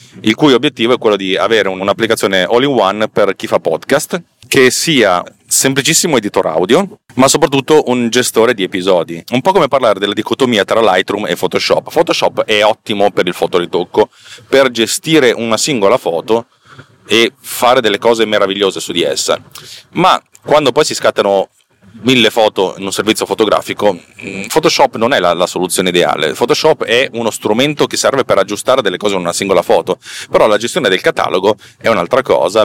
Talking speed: 175 wpm